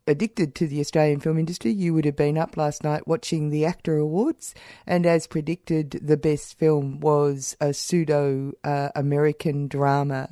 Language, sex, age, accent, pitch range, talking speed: English, female, 50-69, Australian, 145-165 Hz, 165 wpm